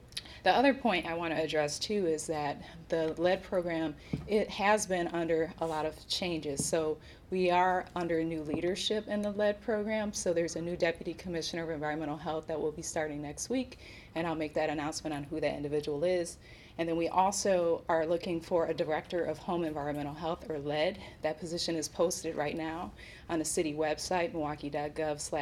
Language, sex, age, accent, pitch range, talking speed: English, female, 30-49, American, 155-175 Hz, 195 wpm